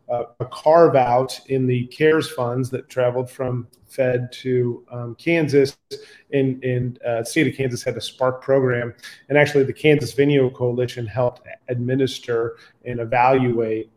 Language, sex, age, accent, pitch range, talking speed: English, male, 30-49, American, 120-135 Hz, 140 wpm